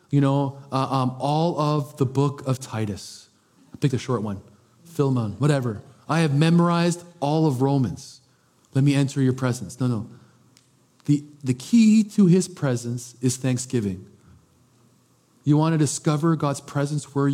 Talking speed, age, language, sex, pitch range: 155 wpm, 40-59, English, male, 120-150 Hz